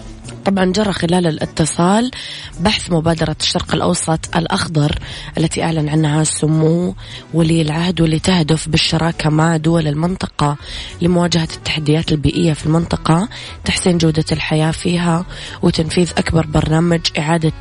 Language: Arabic